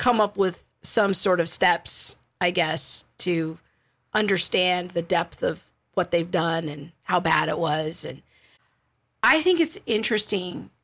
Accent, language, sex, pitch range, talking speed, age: American, English, female, 185-220 Hz, 150 wpm, 40-59